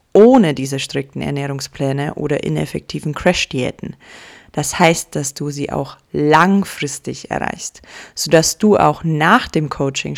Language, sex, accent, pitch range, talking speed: German, female, German, 150-185 Hz, 125 wpm